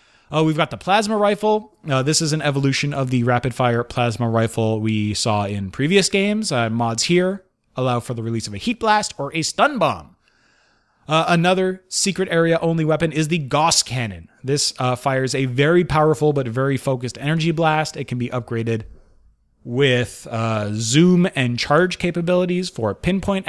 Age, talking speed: 30-49, 175 wpm